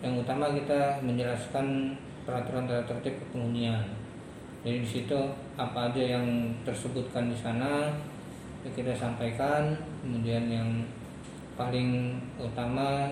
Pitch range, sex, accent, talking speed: 120-135 Hz, male, native, 95 wpm